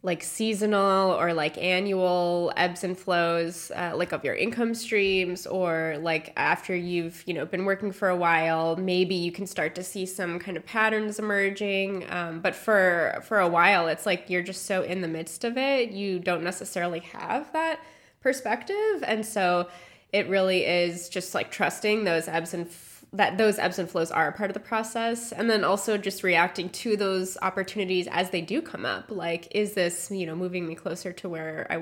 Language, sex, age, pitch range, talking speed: English, female, 20-39, 170-200 Hz, 200 wpm